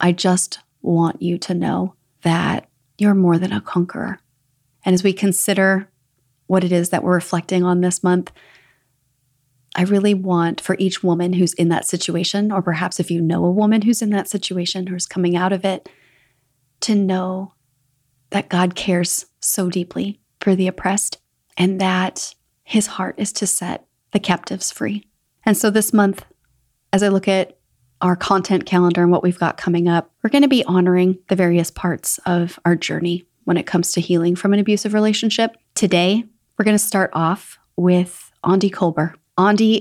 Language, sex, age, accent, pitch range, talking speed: English, female, 30-49, American, 170-195 Hz, 180 wpm